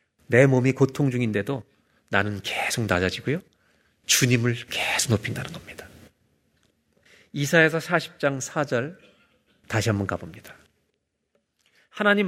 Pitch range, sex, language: 100-140 Hz, male, Korean